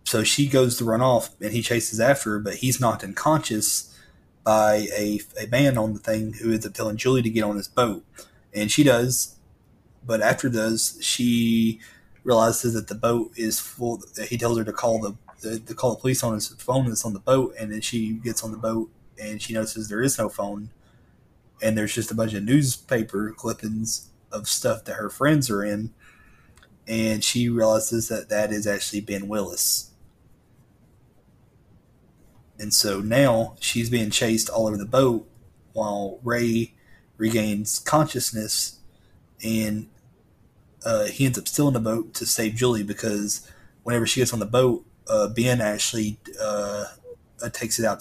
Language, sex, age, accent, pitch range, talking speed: English, male, 30-49, American, 105-120 Hz, 175 wpm